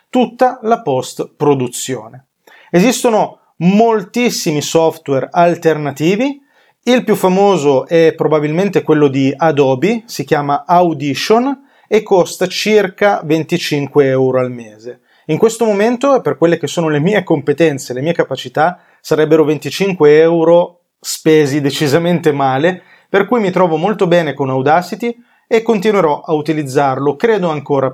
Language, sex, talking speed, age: Italian, male, 125 wpm, 30-49